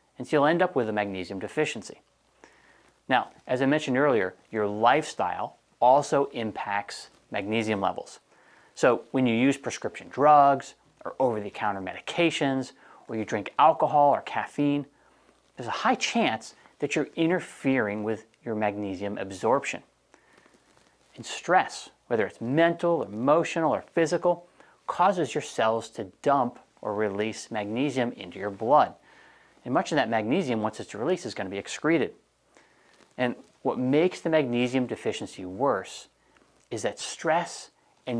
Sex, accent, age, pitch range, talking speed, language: male, American, 30-49, 105-145 Hz, 145 wpm, English